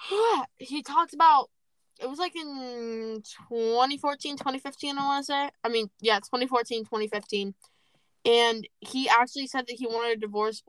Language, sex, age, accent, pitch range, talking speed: English, female, 10-29, American, 210-300 Hz, 155 wpm